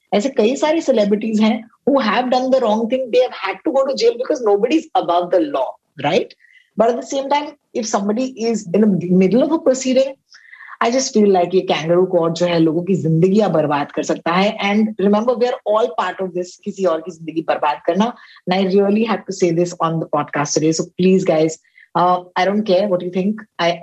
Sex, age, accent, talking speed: female, 20-39, native, 155 wpm